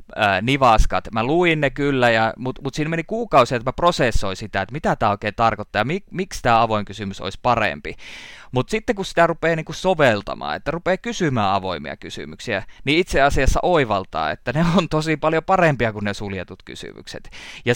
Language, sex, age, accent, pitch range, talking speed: Finnish, male, 20-39, native, 105-155 Hz, 180 wpm